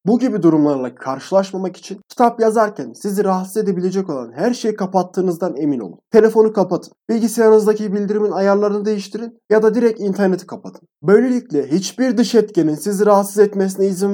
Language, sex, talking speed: Turkish, male, 150 wpm